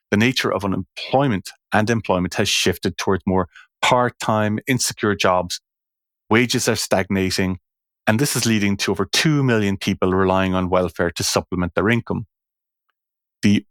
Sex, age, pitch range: male, 30-49, 95-115 Hz